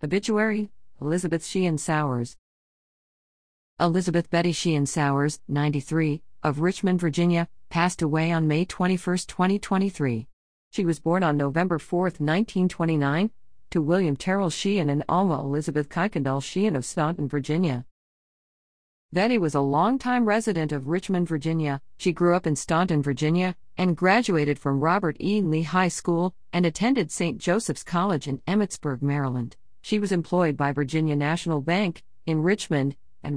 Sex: female